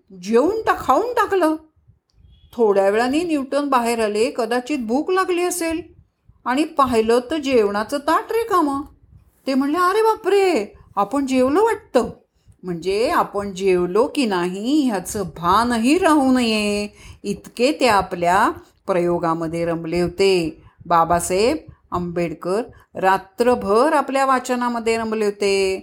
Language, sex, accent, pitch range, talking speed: Marathi, female, native, 190-285 Hz, 110 wpm